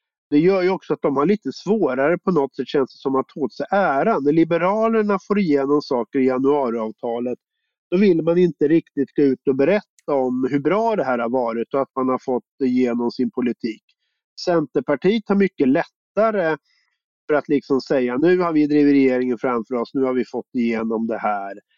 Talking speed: 200 wpm